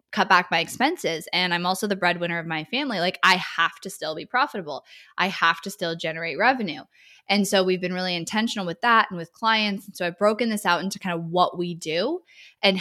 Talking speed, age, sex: 230 wpm, 20-39, female